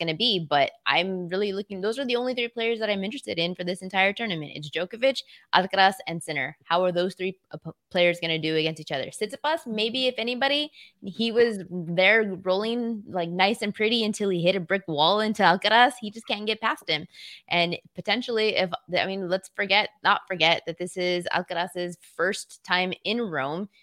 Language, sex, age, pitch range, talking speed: English, female, 20-39, 160-205 Hz, 205 wpm